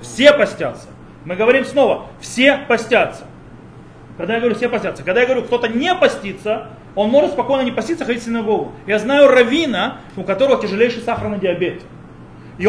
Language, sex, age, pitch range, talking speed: Russian, male, 30-49, 205-270 Hz, 165 wpm